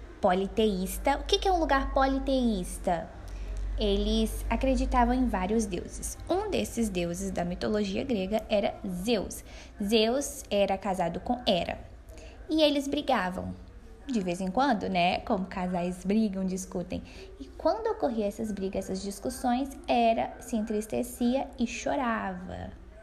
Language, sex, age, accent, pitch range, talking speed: Portuguese, female, 10-29, Brazilian, 185-265 Hz, 130 wpm